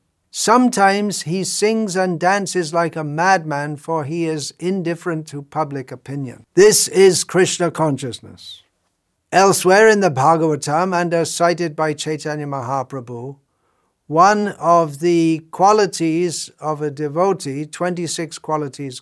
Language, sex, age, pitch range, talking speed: English, male, 60-79, 130-170 Hz, 120 wpm